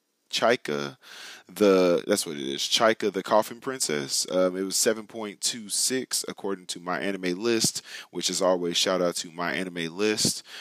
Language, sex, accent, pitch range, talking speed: English, male, American, 90-105 Hz, 175 wpm